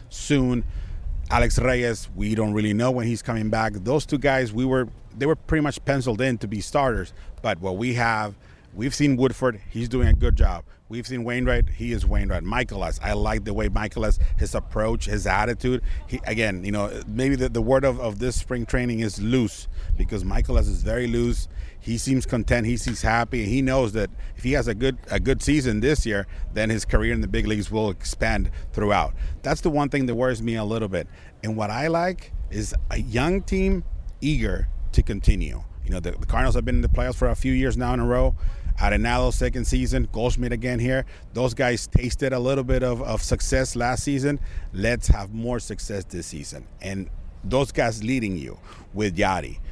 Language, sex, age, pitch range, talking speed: English, male, 30-49, 100-125 Hz, 205 wpm